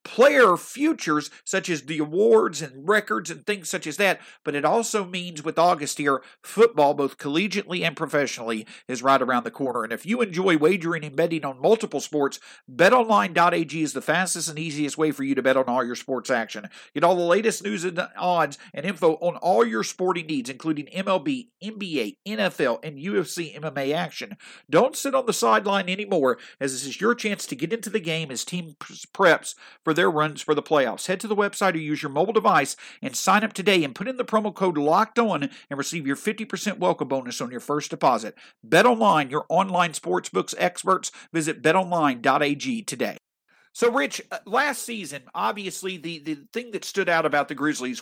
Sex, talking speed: male, 195 wpm